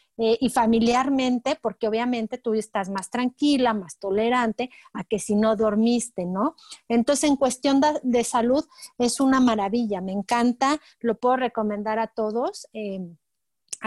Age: 30-49